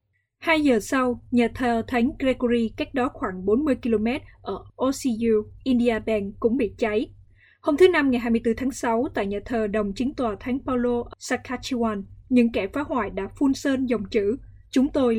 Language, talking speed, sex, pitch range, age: Vietnamese, 180 wpm, female, 215-255 Hz, 20-39